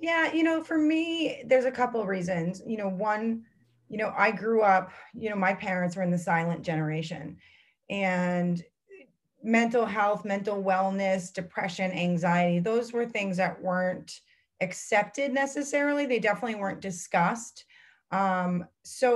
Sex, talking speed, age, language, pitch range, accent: female, 145 wpm, 30-49, English, 175-230 Hz, American